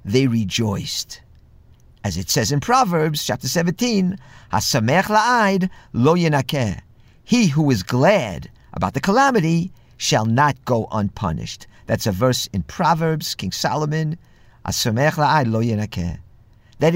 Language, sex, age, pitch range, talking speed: English, male, 50-69, 115-195 Hz, 105 wpm